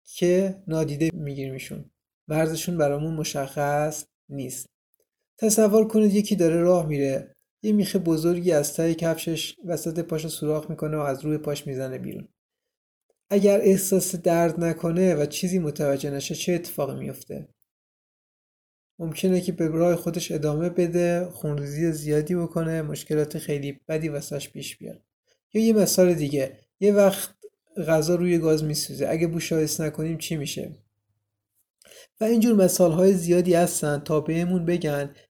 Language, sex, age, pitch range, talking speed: Persian, male, 30-49, 150-180 Hz, 140 wpm